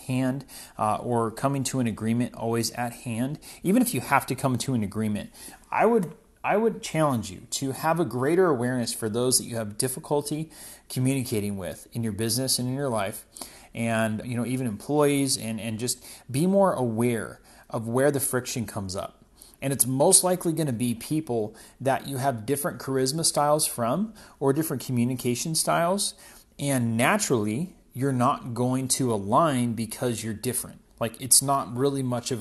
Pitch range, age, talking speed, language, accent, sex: 115-145 Hz, 30-49, 180 wpm, English, American, male